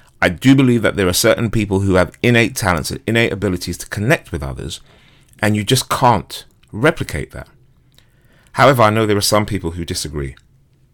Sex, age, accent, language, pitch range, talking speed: male, 30-49, British, English, 90-125 Hz, 185 wpm